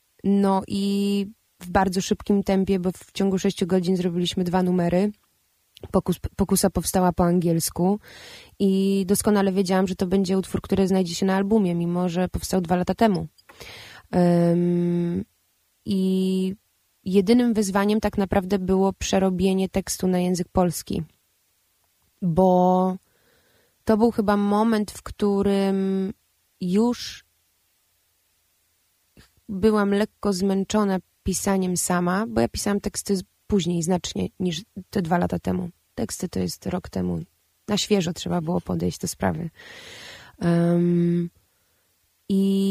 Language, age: Polish, 20-39